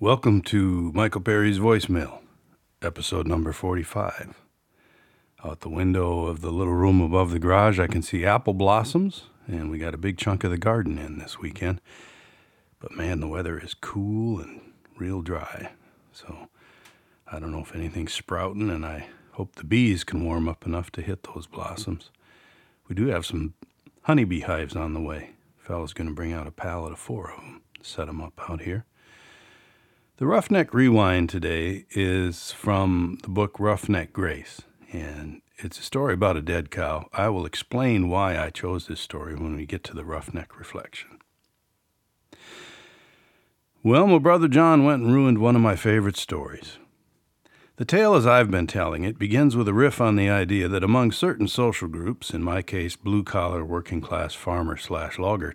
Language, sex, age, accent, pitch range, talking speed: English, male, 40-59, American, 85-110 Hz, 175 wpm